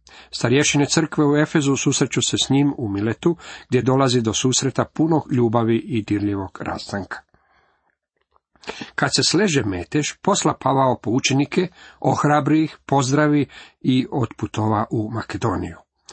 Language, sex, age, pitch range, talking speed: Croatian, male, 40-59, 115-150 Hz, 120 wpm